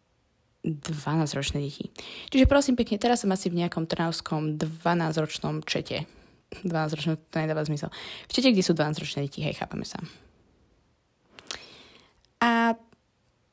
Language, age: Slovak, 20-39